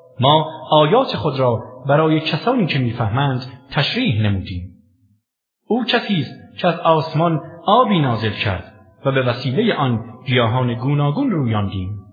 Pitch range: 115-165 Hz